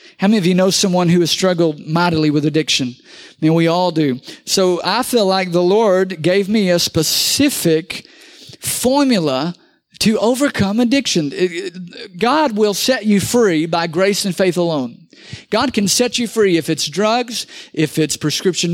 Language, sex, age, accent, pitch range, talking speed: English, male, 50-69, American, 185-250 Hz, 165 wpm